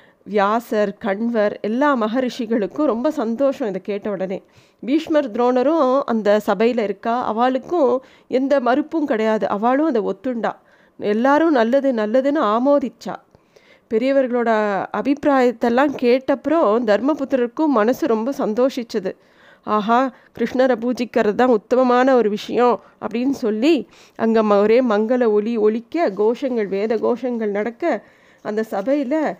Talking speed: 105 wpm